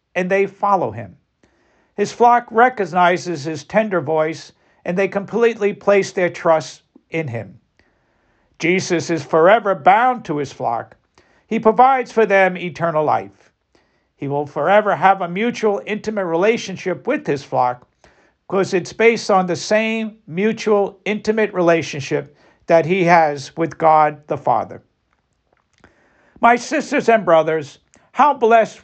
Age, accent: 50-69, American